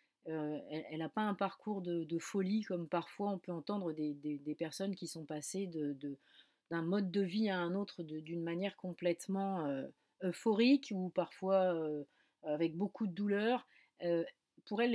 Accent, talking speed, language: French, 185 wpm, French